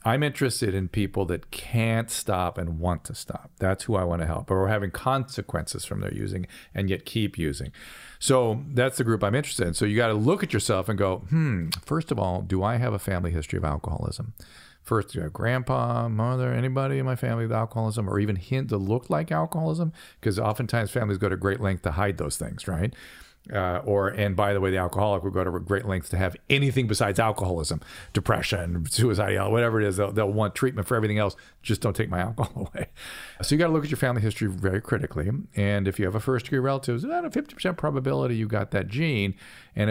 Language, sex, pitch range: English, male, 95-120 Hz